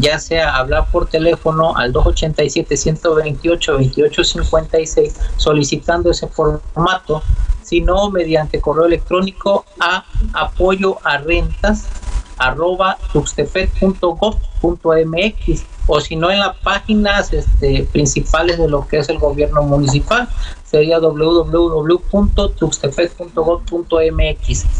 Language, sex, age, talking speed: Spanish, male, 50-69, 85 wpm